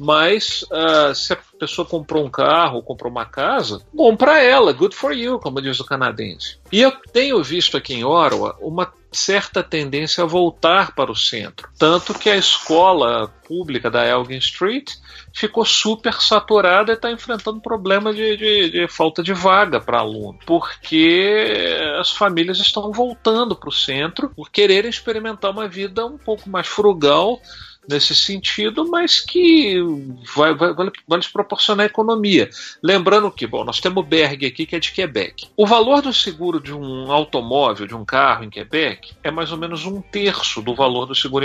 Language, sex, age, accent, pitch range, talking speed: Portuguese, male, 40-59, Brazilian, 150-225 Hz, 175 wpm